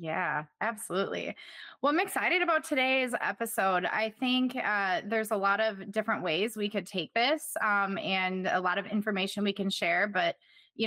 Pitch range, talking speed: 195-245 Hz, 175 wpm